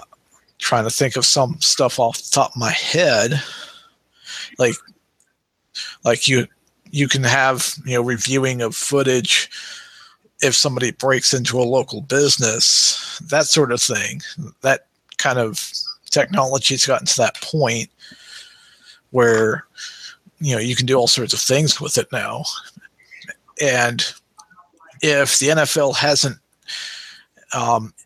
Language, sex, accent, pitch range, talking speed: English, male, American, 120-150 Hz, 135 wpm